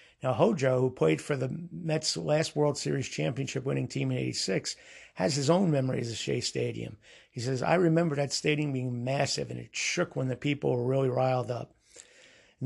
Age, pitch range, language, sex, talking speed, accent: 50-69, 130-160 Hz, English, male, 190 wpm, American